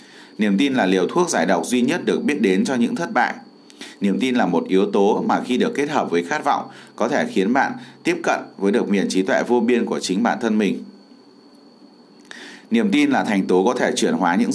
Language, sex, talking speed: Vietnamese, male, 240 wpm